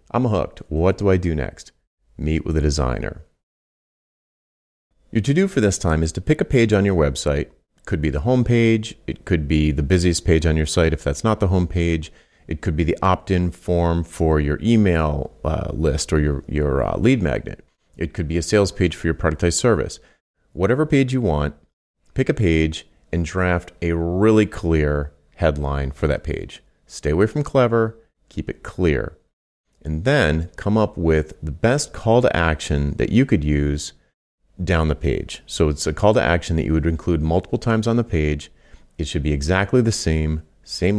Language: English